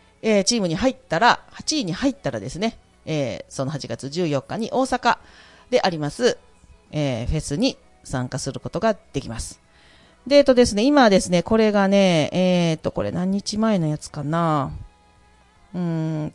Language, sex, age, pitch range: Japanese, female, 40-59, 145-200 Hz